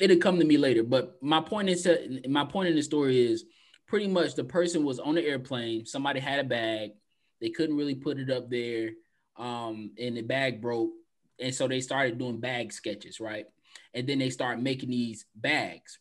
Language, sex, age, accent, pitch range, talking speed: English, male, 20-39, American, 125-180 Hz, 205 wpm